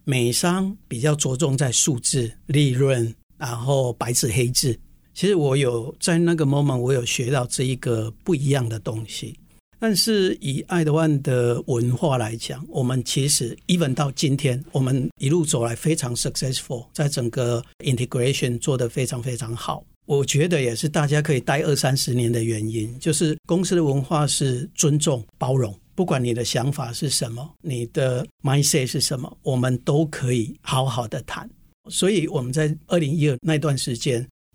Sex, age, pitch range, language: male, 60-79, 125-160 Hz, Chinese